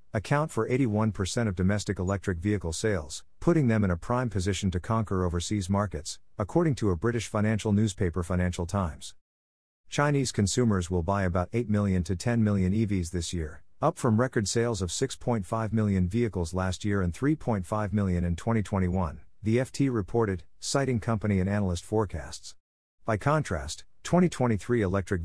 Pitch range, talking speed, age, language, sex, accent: 90-115 Hz, 155 wpm, 50-69, English, male, American